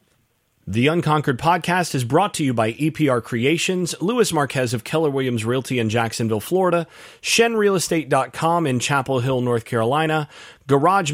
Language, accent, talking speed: English, American, 150 wpm